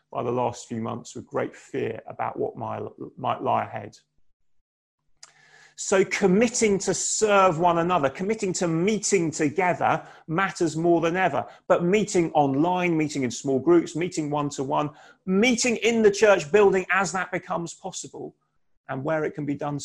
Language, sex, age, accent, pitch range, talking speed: English, male, 30-49, British, 135-185 Hz, 155 wpm